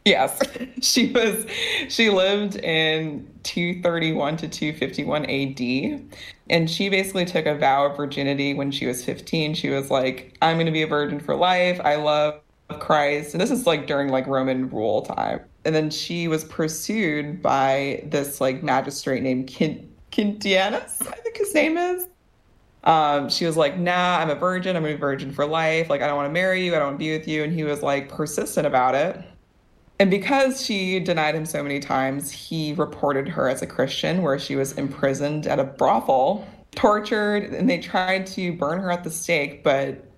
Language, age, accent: English, 20-39, American